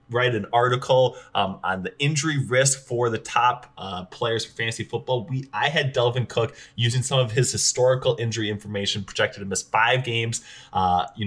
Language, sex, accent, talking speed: English, male, American, 185 wpm